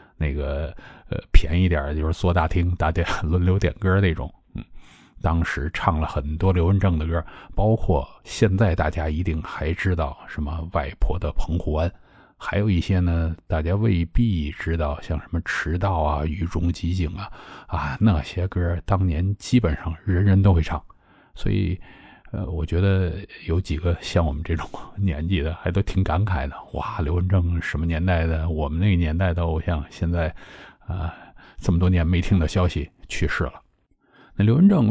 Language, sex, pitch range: Chinese, male, 80-95 Hz